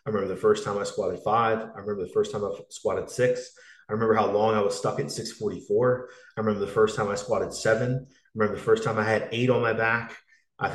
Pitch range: 120-175 Hz